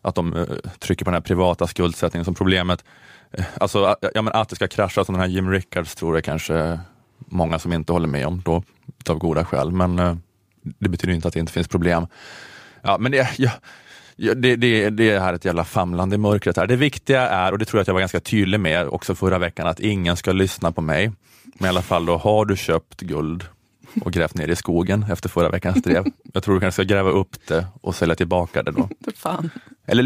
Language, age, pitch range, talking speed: Swedish, 20-39, 85-105 Hz, 225 wpm